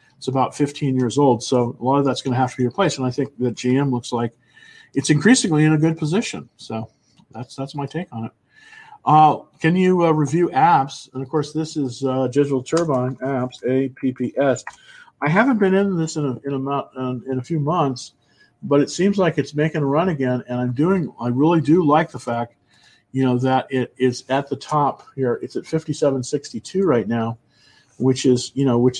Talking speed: 220 wpm